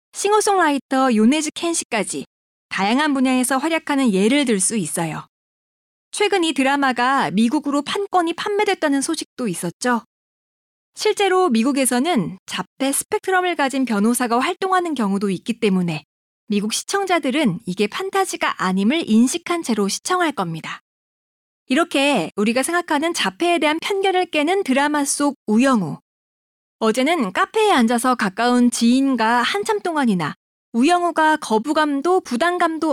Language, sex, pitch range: Korean, female, 225-340 Hz